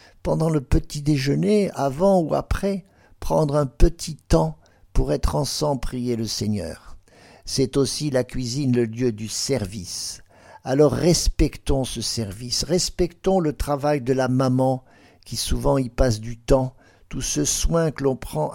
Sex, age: male, 50-69